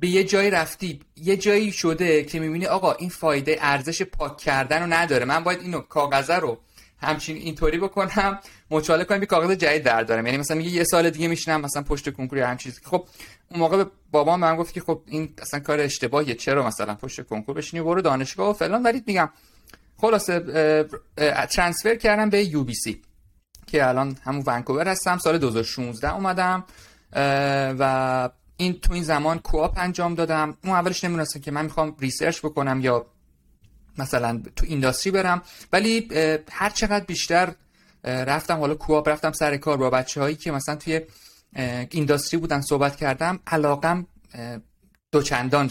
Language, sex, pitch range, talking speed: English, male, 140-175 Hz, 160 wpm